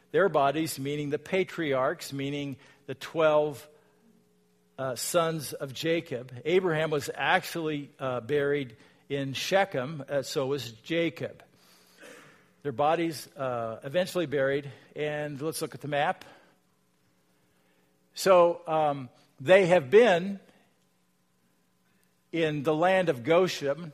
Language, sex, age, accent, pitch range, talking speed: English, male, 50-69, American, 125-170 Hz, 110 wpm